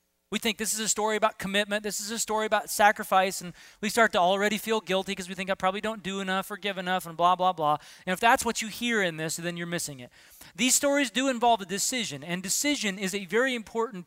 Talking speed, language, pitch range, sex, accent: 255 wpm, English, 175-235 Hz, male, American